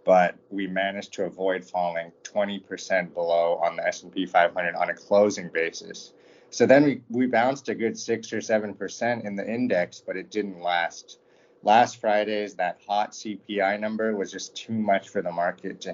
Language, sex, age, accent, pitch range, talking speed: English, male, 30-49, American, 95-110 Hz, 175 wpm